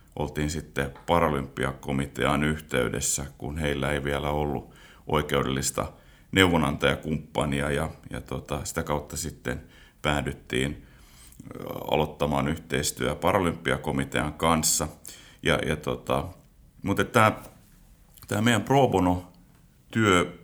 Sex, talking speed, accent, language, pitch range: male, 90 wpm, native, Finnish, 75-85 Hz